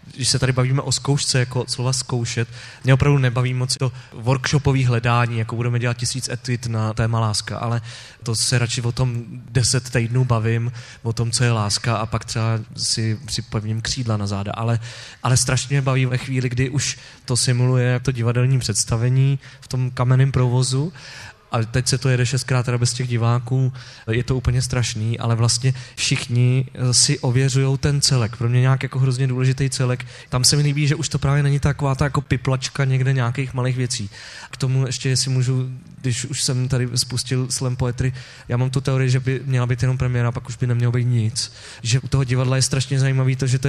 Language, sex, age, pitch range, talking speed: Czech, male, 20-39, 120-130 Hz, 200 wpm